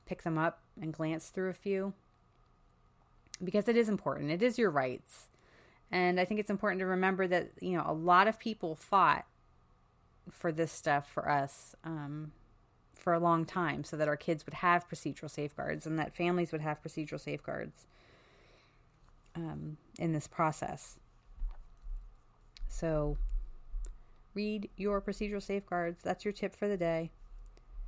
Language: English